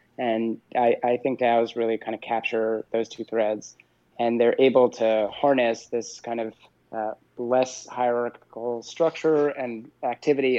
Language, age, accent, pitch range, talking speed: English, 20-39, American, 115-125 Hz, 155 wpm